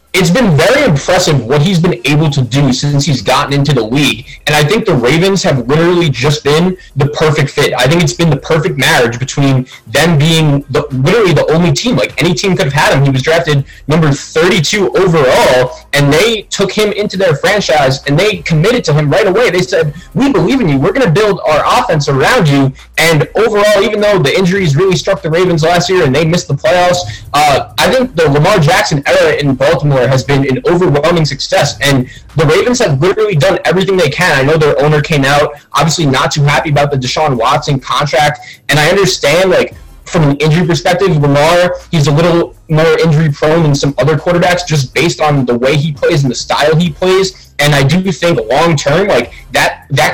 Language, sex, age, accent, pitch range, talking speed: English, male, 20-39, American, 140-175 Hz, 210 wpm